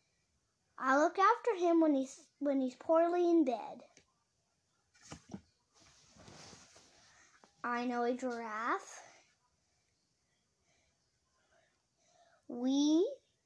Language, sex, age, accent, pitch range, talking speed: English, female, 10-29, American, 255-340 Hz, 70 wpm